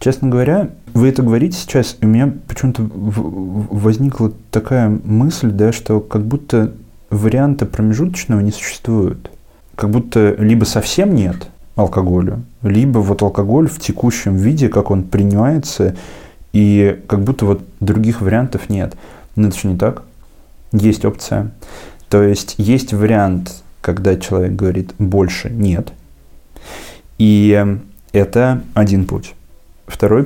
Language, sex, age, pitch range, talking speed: Russian, male, 20-39, 100-125 Hz, 130 wpm